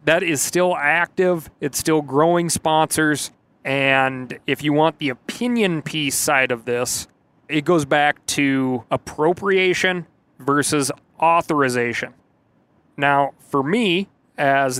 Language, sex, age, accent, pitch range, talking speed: English, male, 30-49, American, 135-165 Hz, 120 wpm